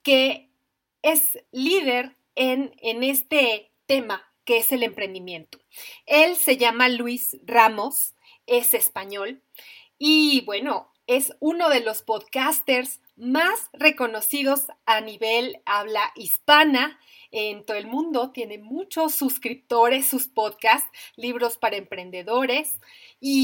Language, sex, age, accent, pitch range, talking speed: Spanish, female, 30-49, Mexican, 240-310 Hz, 115 wpm